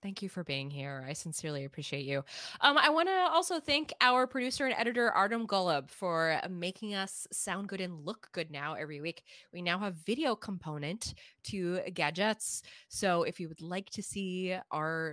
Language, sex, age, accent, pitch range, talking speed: English, female, 20-39, American, 155-230 Hz, 185 wpm